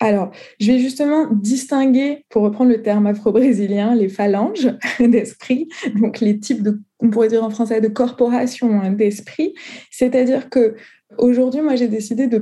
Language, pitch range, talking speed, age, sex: French, 210-250 Hz, 155 wpm, 20-39, female